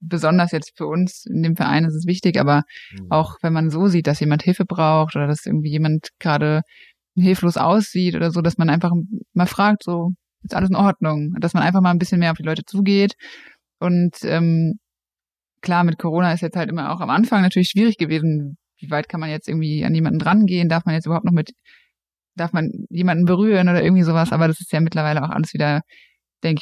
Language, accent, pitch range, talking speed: German, German, 160-185 Hz, 215 wpm